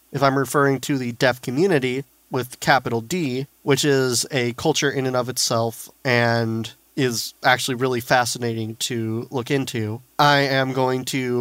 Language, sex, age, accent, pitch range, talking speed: English, male, 30-49, American, 120-140 Hz, 160 wpm